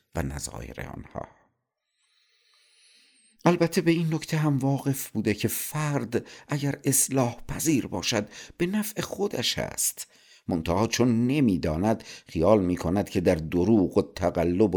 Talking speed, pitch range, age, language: 120 wpm, 80-115 Hz, 50-69, Persian